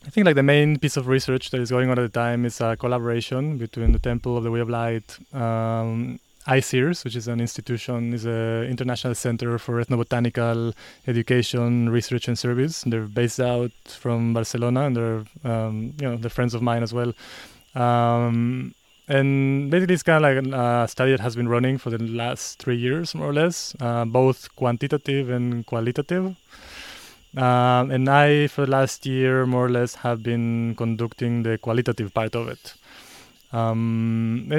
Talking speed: 180 wpm